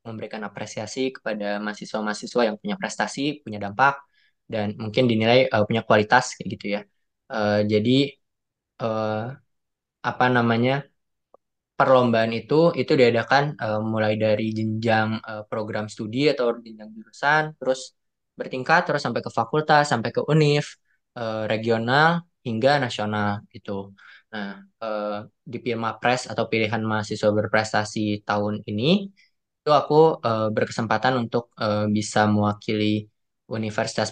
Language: Indonesian